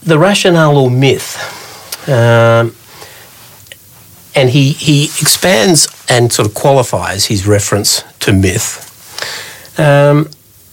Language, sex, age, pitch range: English, male, 50-69, 100-125 Hz